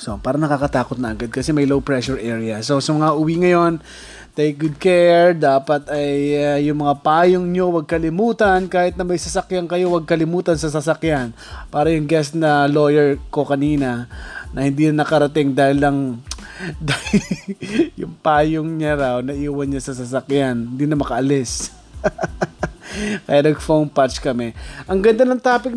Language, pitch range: Filipino, 140-175 Hz